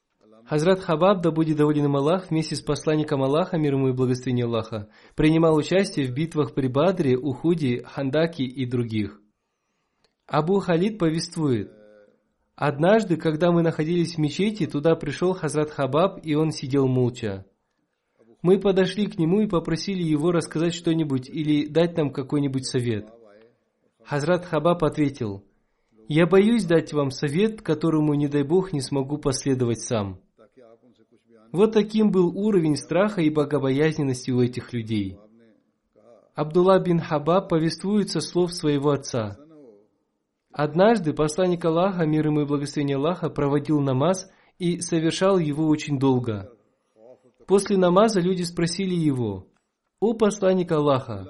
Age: 20-39